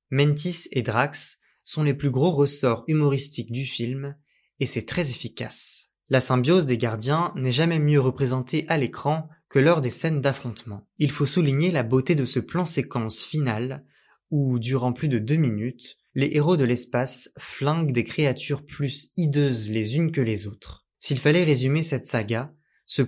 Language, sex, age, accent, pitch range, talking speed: French, male, 20-39, French, 120-150 Hz, 170 wpm